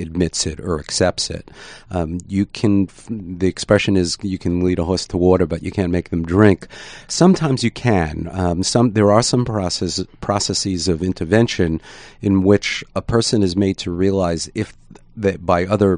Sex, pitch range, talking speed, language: male, 85-100 Hz, 180 wpm, English